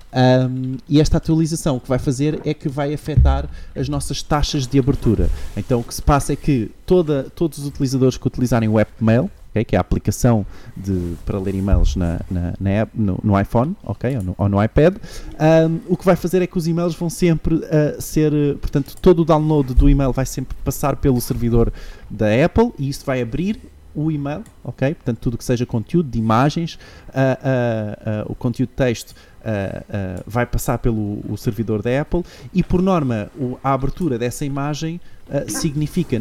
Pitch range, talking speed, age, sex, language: 110-150 Hz, 175 wpm, 20-39, male, Portuguese